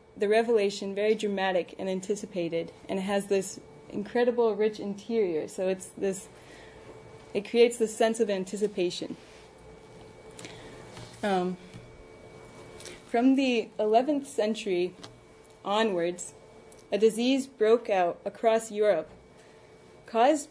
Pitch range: 190-225 Hz